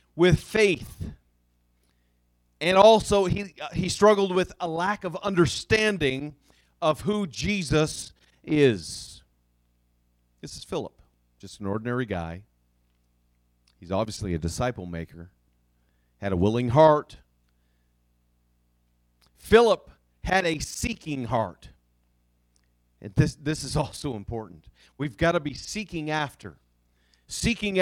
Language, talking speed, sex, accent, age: English, 110 wpm, male, American, 40-59